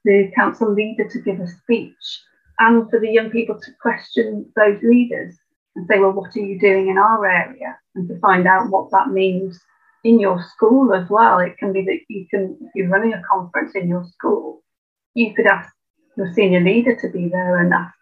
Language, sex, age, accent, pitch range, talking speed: English, female, 30-49, British, 195-235 Hz, 210 wpm